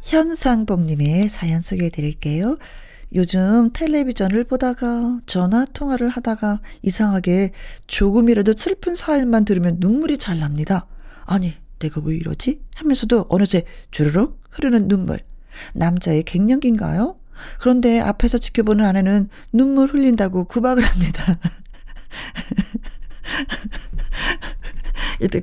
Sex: female